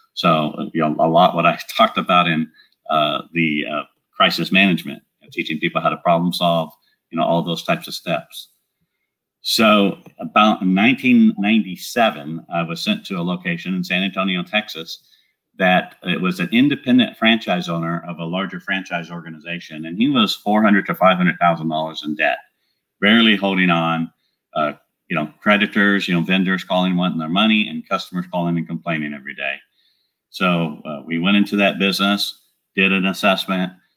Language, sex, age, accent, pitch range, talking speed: English, male, 50-69, American, 85-100 Hz, 170 wpm